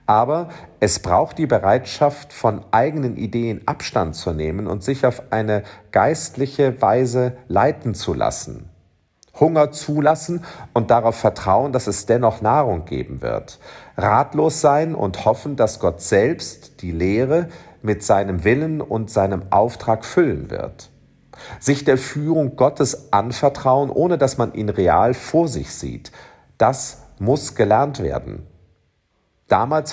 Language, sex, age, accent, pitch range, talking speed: German, male, 50-69, German, 100-145 Hz, 130 wpm